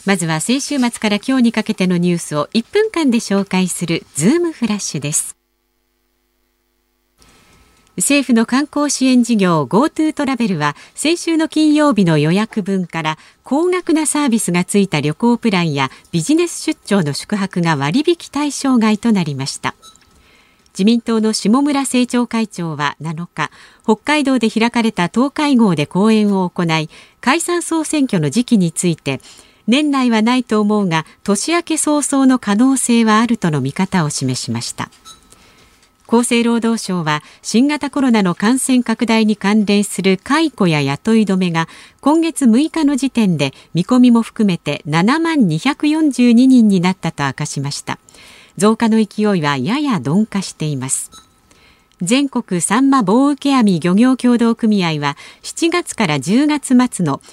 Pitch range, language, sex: 170-260 Hz, Japanese, female